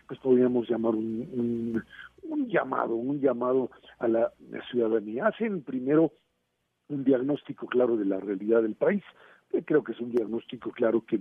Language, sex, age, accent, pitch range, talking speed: Spanish, male, 50-69, Mexican, 110-135 Hz, 160 wpm